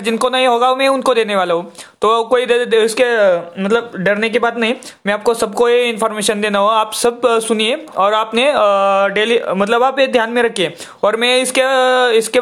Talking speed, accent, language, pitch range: 120 wpm, native, Hindi, 215-250 Hz